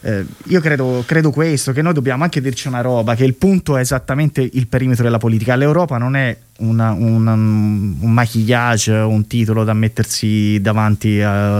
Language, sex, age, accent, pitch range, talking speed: Italian, male, 20-39, native, 115-150 Hz, 165 wpm